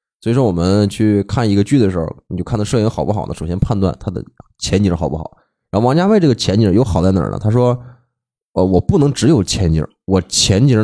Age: 20-39